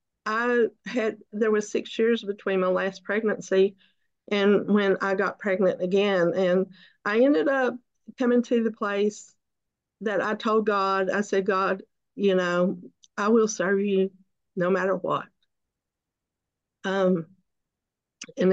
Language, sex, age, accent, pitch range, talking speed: English, female, 50-69, American, 185-205 Hz, 135 wpm